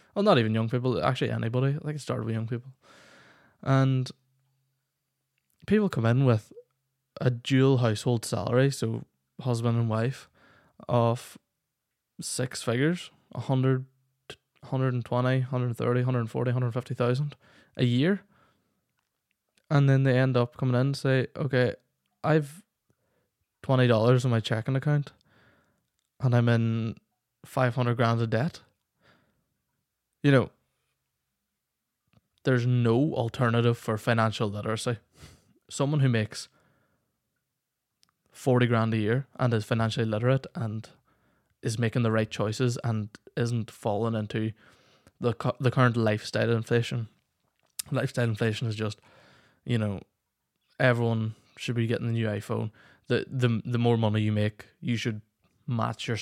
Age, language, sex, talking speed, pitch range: 20-39, English, male, 125 wpm, 115-130 Hz